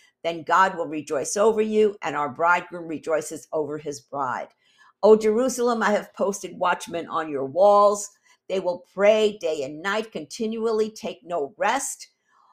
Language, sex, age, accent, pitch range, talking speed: English, female, 50-69, American, 165-220 Hz, 155 wpm